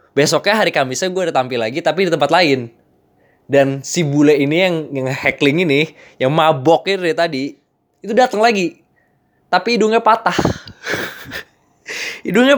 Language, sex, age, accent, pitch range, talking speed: Indonesian, male, 20-39, native, 120-160 Hz, 140 wpm